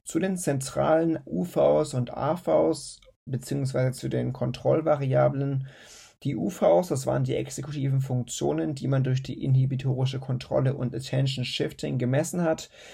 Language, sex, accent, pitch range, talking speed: German, male, German, 120-140 Hz, 130 wpm